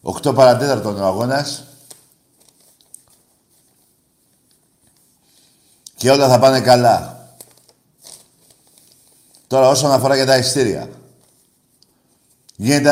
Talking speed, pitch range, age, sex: 75 wpm, 95-135 Hz, 60-79, male